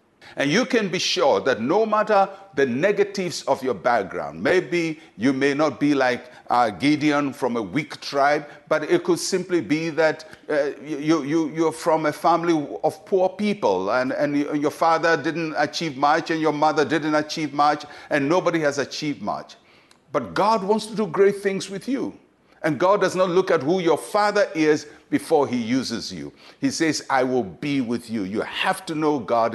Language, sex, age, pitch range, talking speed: English, male, 60-79, 145-185 Hz, 185 wpm